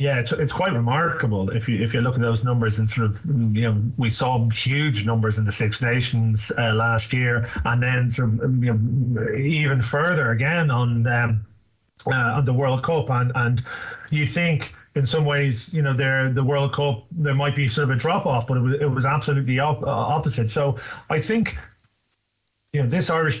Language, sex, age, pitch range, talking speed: English, male, 30-49, 120-140 Hz, 205 wpm